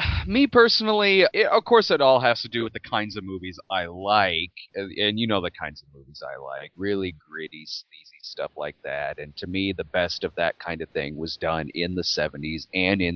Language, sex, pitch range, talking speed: English, male, 90-105 Hz, 225 wpm